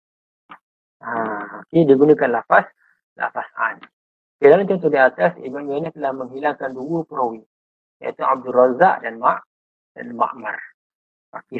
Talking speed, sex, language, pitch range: 140 wpm, male, Malay, 125-160 Hz